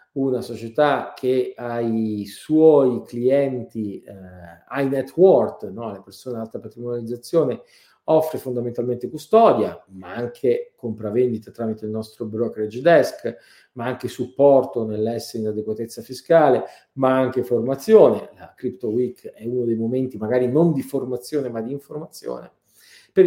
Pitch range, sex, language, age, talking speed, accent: 115-145 Hz, male, Italian, 40-59, 130 wpm, native